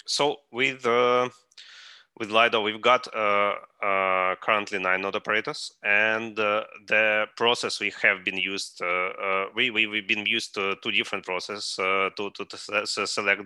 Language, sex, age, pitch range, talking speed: English, male, 20-39, 90-105 Hz, 170 wpm